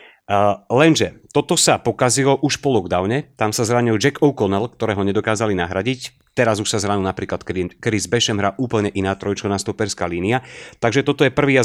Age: 30-49